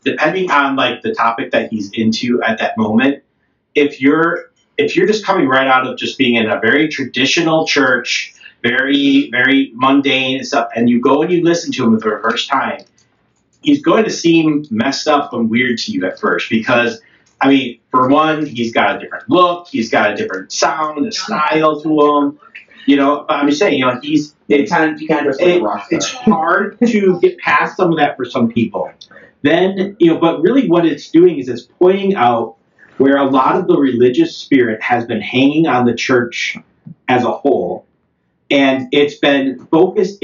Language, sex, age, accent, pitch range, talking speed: English, male, 40-59, American, 125-170 Hz, 195 wpm